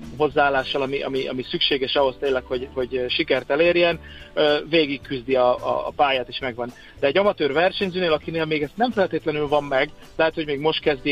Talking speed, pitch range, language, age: 190 wpm, 130-155 Hz, Hungarian, 30-49